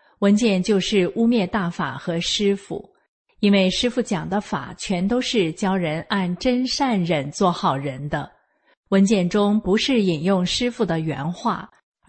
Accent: native